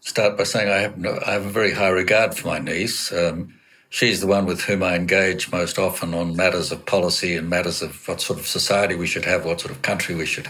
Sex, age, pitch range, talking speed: male, 60-79, 90-110 Hz, 255 wpm